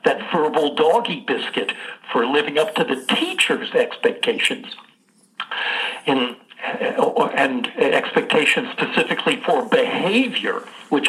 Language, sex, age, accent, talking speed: English, male, 60-79, American, 90 wpm